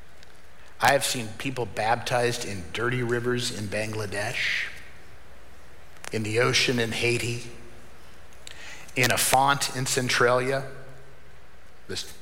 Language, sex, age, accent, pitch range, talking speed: English, male, 50-69, American, 120-150 Hz, 105 wpm